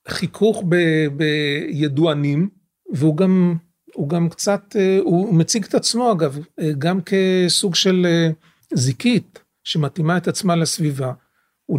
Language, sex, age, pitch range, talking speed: Hebrew, male, 40-59, 150-195 Hz, 105 wpm